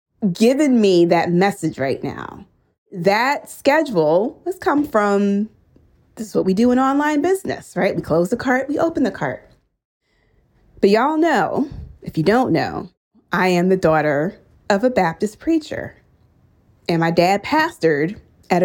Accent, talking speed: American, 155 wpm